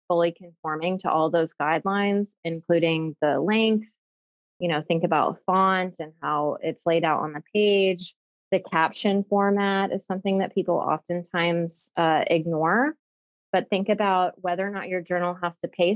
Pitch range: 160-190 Hz